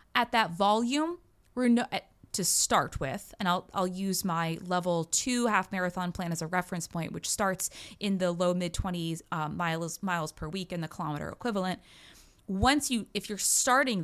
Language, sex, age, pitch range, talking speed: English, female, 20-39, 180-250 Hz, 180 wpm